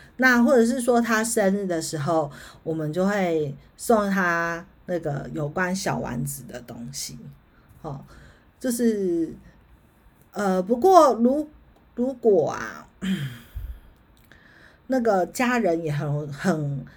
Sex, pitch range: female, 150-205 Hz